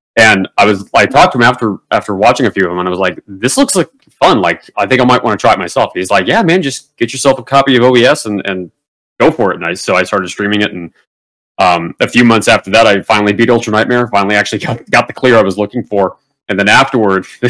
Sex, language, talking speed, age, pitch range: male, English, 275 wpm, 30-49, 100-125 Hz